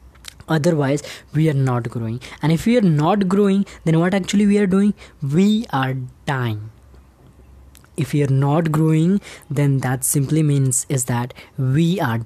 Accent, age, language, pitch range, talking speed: Indian, 20-39, English, 140-165 Hz, 160 wpm